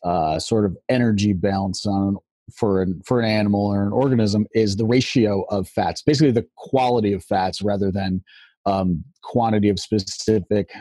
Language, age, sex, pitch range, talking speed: English, 30-49, male, 95-120 Hz, 165 wpm